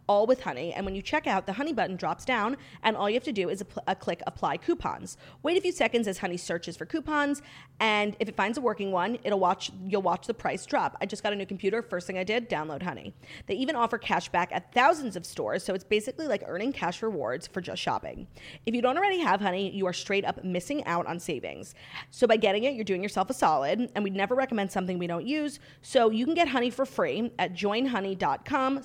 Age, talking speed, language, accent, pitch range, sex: 30-49, 250 wpm, English, American, 180-260 Hz, female